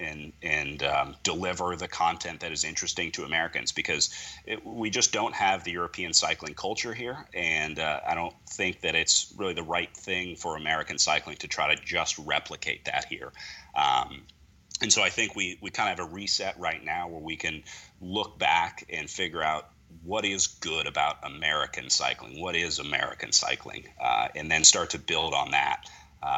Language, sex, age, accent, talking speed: English, male, 30-49, American, 190 wpm